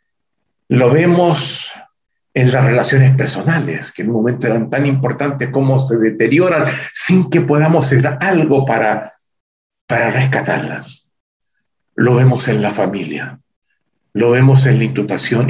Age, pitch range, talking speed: 50-69, 130-155 Hz, 125 wpm